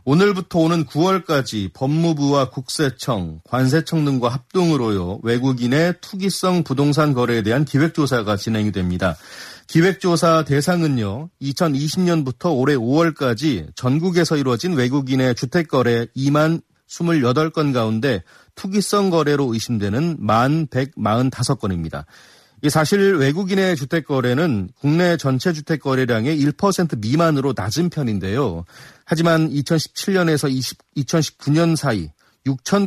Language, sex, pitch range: Korean, male, 120-165 Hz